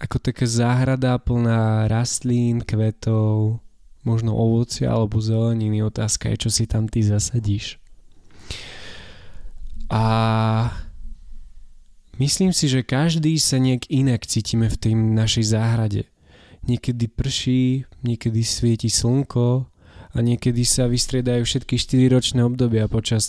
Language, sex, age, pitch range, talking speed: Slovak, male, 20-39, 100-120 Hz, 110 wpm